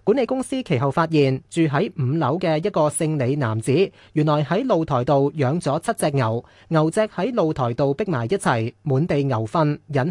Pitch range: 130-180 Hz